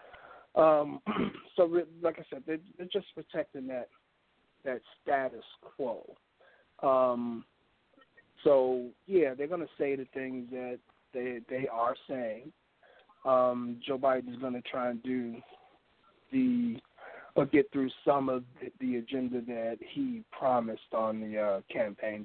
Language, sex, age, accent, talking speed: English, male, 40-59, American, 140 wpm